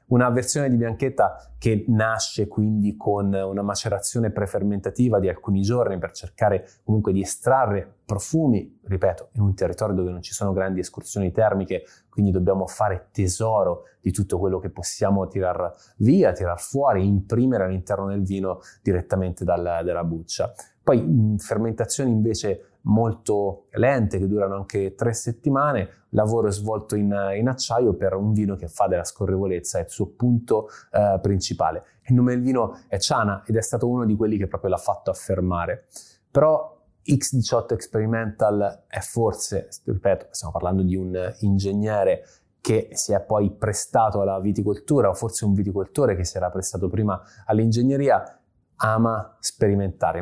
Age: 20-39